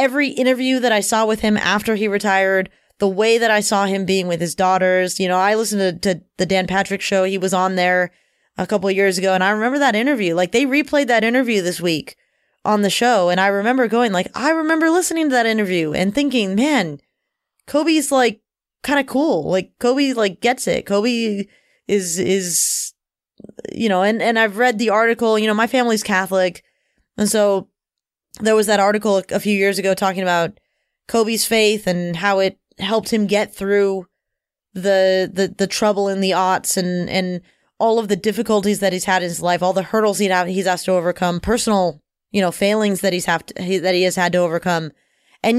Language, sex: English, female